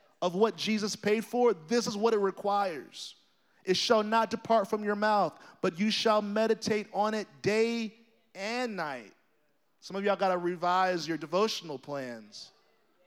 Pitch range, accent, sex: 210-255 Hz, American, male